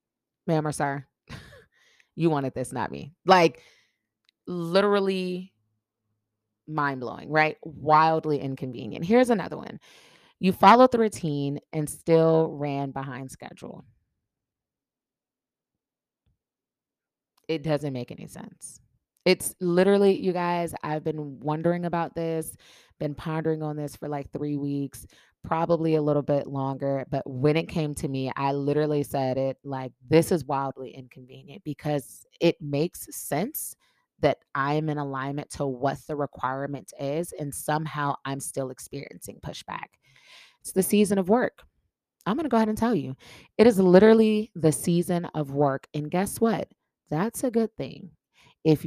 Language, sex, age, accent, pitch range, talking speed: English, female, 20-39, American, 140-175 Hz, 140 wpm